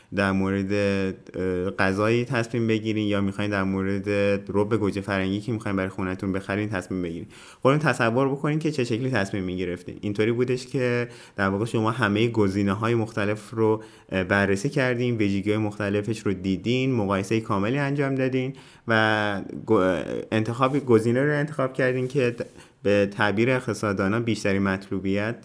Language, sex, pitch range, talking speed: Persian, male, 100-125 Hz, 140 wpm